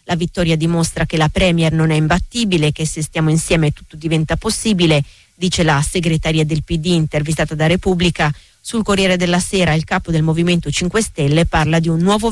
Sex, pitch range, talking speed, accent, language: female, 160-190 Hz, 185 wpm, native, Italian